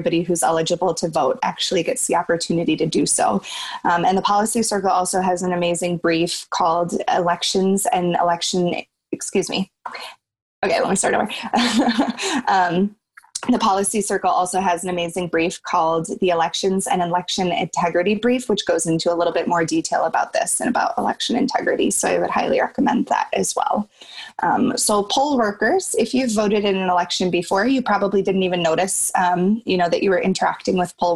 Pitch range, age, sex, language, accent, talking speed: 175-210 Hz, 20-39, female, English, American, 185 wpm